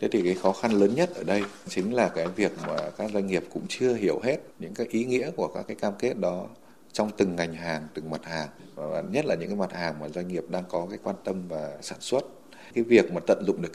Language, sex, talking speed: Vietnamese, male, 270 wpm